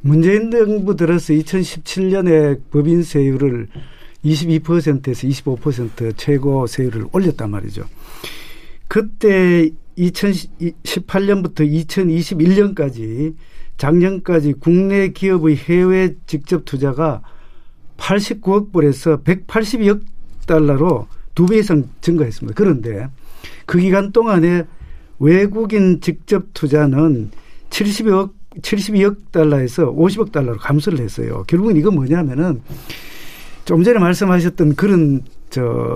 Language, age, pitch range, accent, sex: Korean, 50-69, 145-185 Hz, native, male